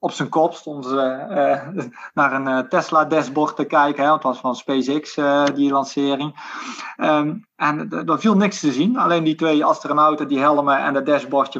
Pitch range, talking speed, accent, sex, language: 145-200 Hz, 190 wpm, Dutch, male, Dutch